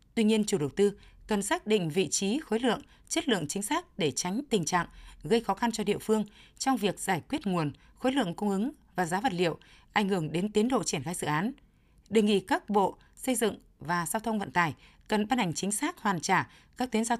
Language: Vietnamese